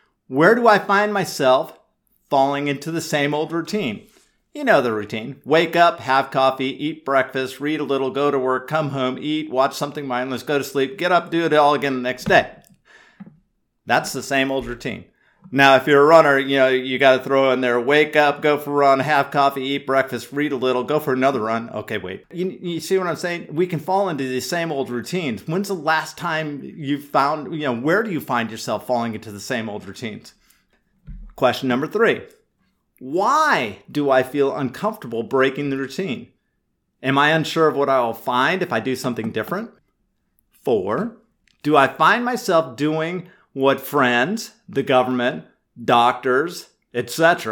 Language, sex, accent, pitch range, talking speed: English, male, American, 135-175 Hz, 190 wpm